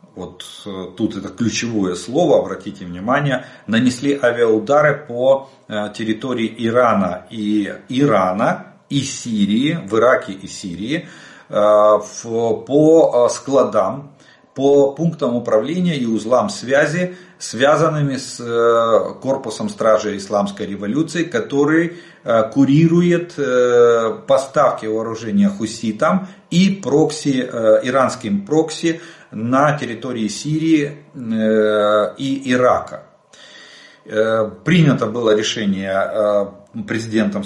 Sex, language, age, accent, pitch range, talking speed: male, Russian, 40-59, native, 110-150 Hz, 85 wpm